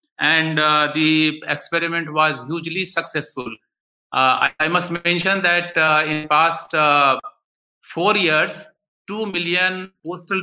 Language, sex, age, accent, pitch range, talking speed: English, male, 50-69, Indian, 150-175 Hz, 130 wpm